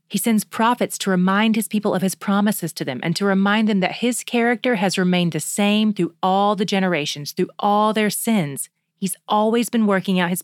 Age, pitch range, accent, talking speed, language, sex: 30-49, 165-210 Hz, American, 215 wpm, English, female